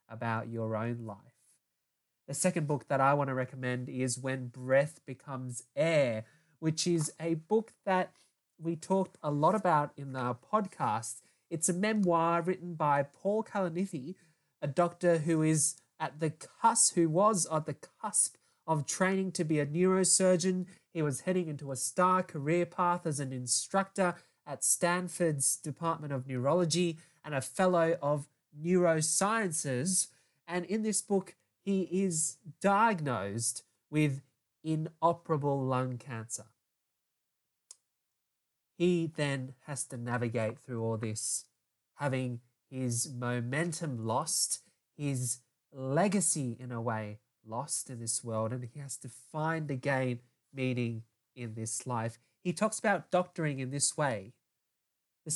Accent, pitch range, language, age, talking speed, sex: Australian, 125-175 Hz, English, 20-39, 135 wpm, male